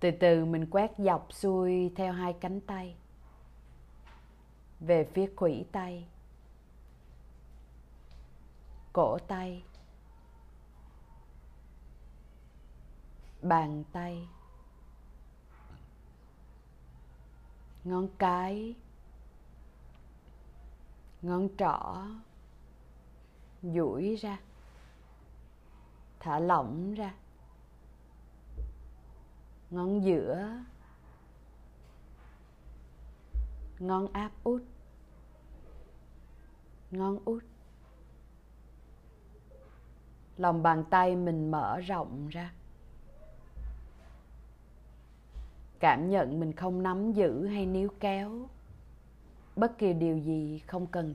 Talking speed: 65 wpm